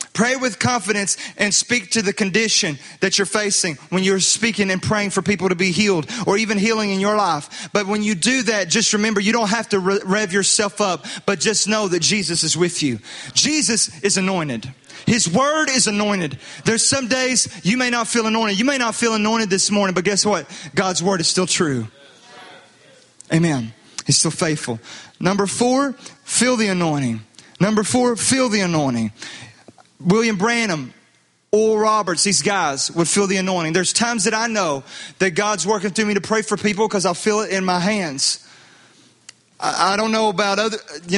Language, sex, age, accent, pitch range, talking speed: English, male, 30-49, American, 180-220 Hz, 190 wpm